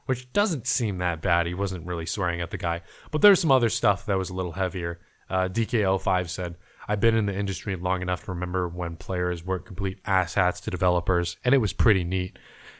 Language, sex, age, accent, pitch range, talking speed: English, male, 20-39, American, 90-120 Hz, 215 wpm